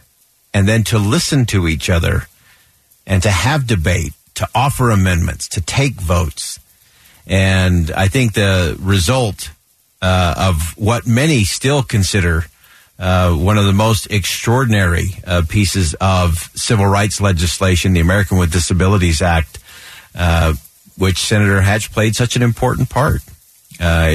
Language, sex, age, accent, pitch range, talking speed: English, male, 50-69, American, 90-110 Hz, 135 wpm